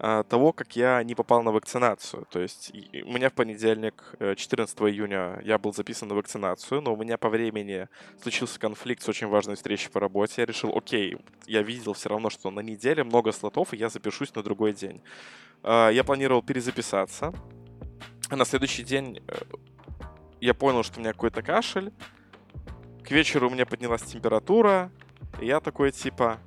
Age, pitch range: 20-39, 105-125 Hz